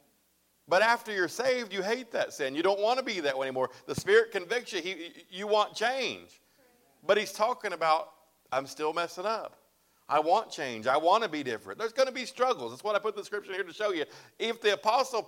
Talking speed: 230 wpm